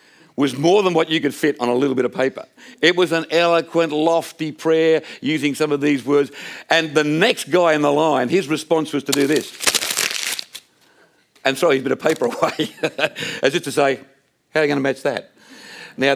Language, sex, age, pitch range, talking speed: English, male, 50-69, 135-180 Hz, 210 wpm